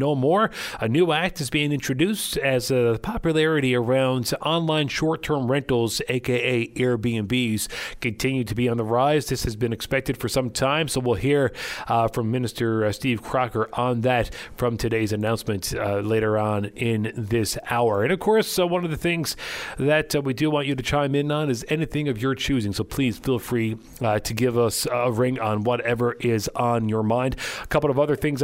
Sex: male